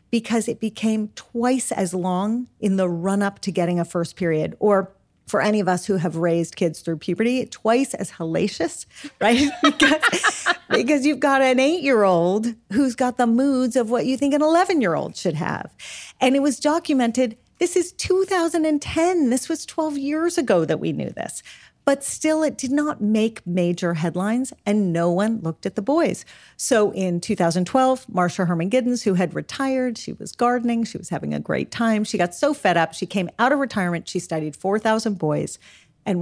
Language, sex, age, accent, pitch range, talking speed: English, female, 40-59, American, 180-255 Hz, 185 wpm